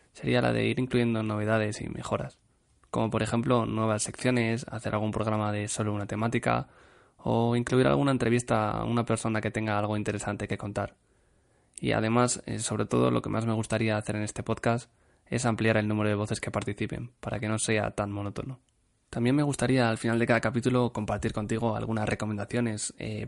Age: 20-39